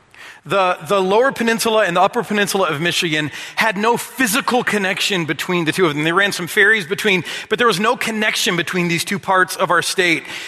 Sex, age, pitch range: male, 40-59, 170-215 Hz